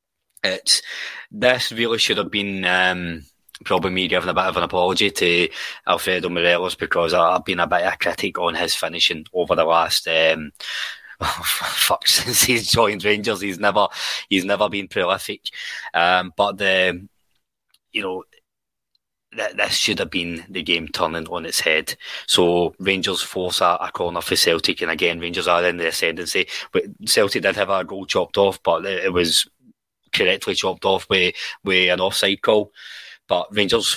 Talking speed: 170 wpm